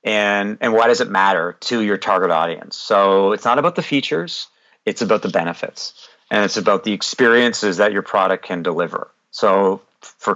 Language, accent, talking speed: English, American, 185 wpm